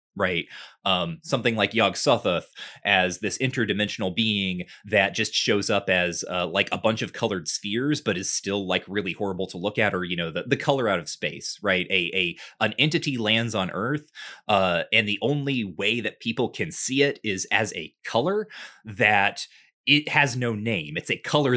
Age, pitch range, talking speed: 20-39, 95-130 Hz, 195 wpm